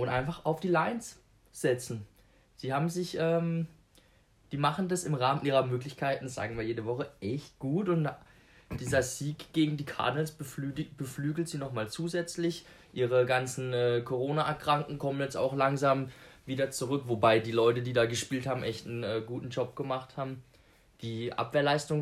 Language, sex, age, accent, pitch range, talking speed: German, male, 20-39, German, 125-155 Hz, 165 wpm